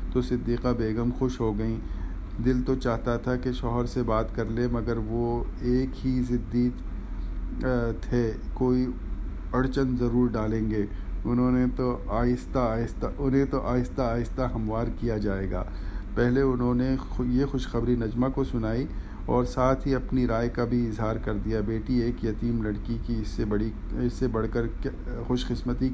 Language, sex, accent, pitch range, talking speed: English, male, Indian, 110-125 Hz, 145 wpm